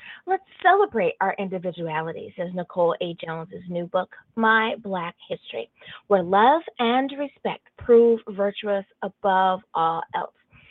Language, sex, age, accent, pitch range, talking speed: English, female, 30-49, American, 190-245 Hz, 125 wpm